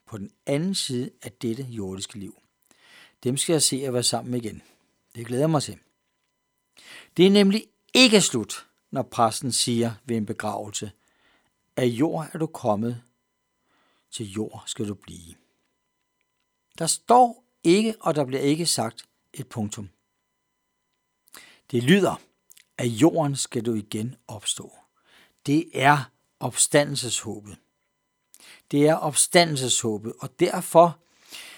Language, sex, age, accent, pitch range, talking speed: Danish, male, 60-79, native, 115-155 Hz, 130 wpm